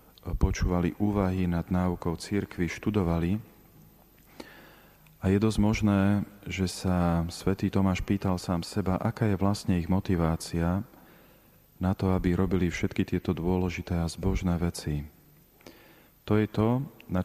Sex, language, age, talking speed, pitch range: male, Slovak, 40-59, 125 wpm, 85-100 Hz